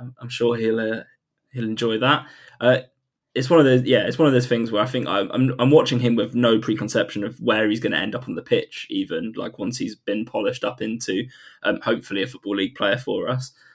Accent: British